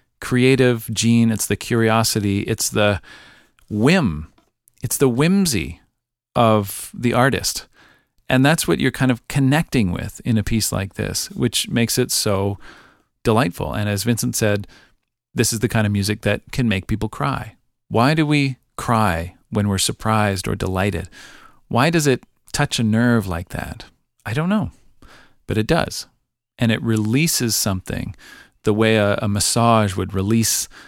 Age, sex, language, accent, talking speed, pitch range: 40-59, male, English, American, 155 wpm, 105-130 Hz